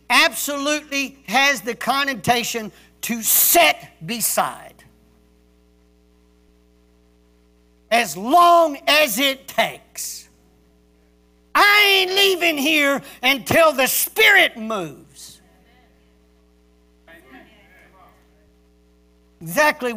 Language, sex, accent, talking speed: English, male, American, 65 wpm